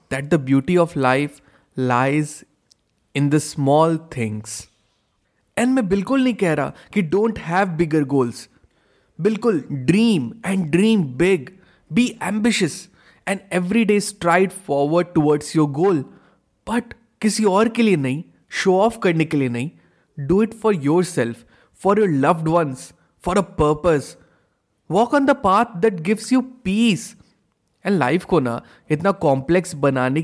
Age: 20-39